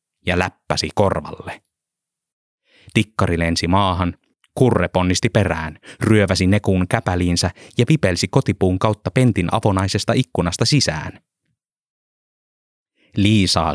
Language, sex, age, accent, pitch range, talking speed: Finnish, male, 30-49, native, 90-115 Hz, 90 wpm